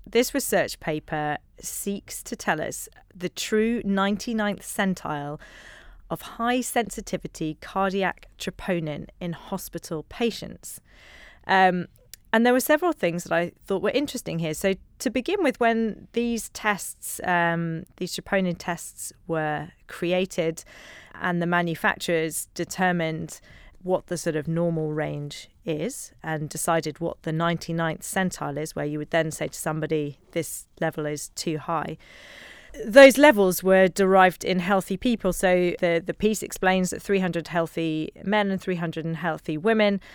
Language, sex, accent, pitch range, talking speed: English, female, British, 165-200 Hz, 140 wpm